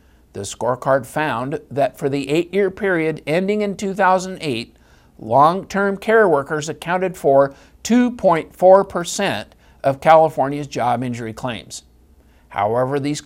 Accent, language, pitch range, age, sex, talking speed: American, English, 130-190 Hz, 50-69, male, 110 wpm